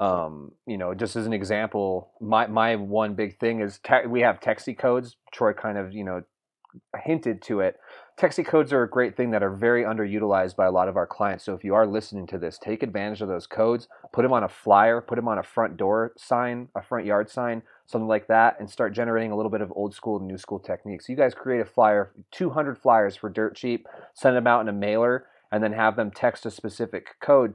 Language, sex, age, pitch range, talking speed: English, male, 30-49, 100-115 Hz, 235 wpm